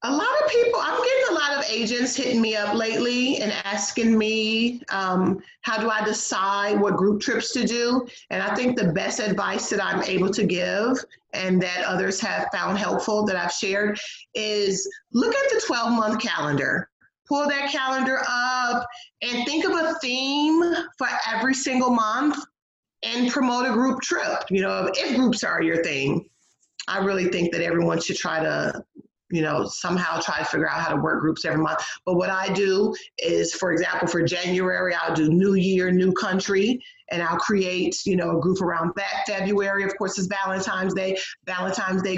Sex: female